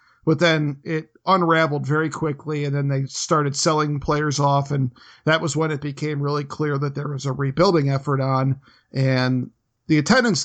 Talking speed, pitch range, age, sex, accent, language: 180 wpm, 135-160 Hz, 50-69, male, American, English